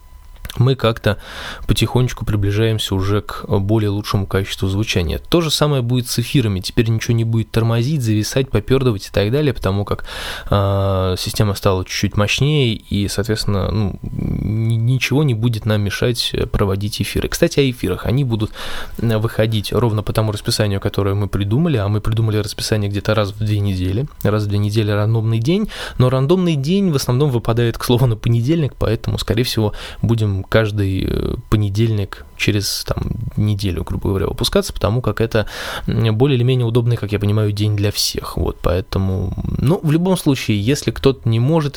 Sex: male